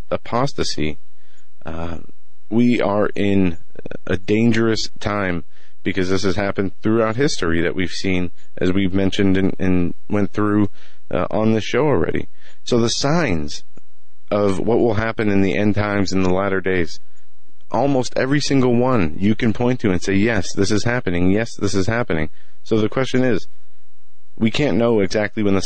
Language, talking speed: English, 170 wpm